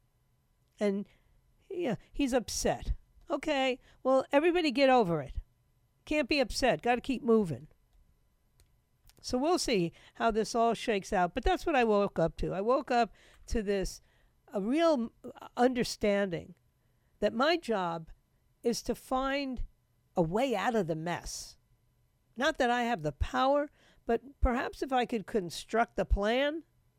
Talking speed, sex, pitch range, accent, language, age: 145 wpm, female, 170-240 Hz, American, English, 50-69